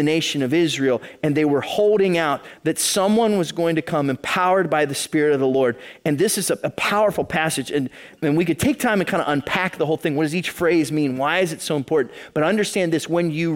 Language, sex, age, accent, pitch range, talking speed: English, male, 30-49, American, 130-180 Hz, 250 wpm